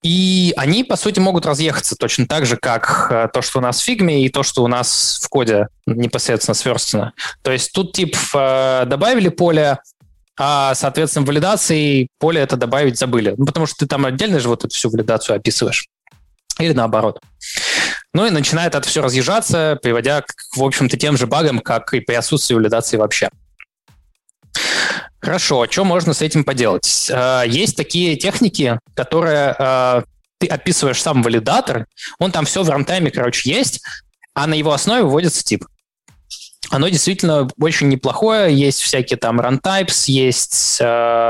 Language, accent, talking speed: Russian, native, 160 wpm